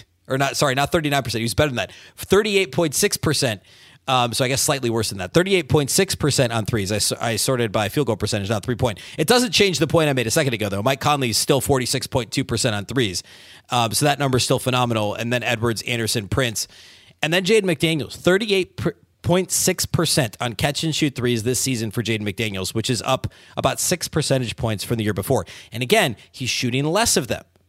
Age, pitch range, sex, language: 30-49, 115-155 Hz, male, English